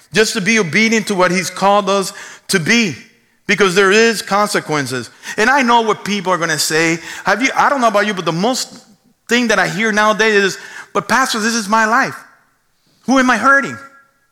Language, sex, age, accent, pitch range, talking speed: English, male, 50-69, American, 180-235 Hz, 210 wpm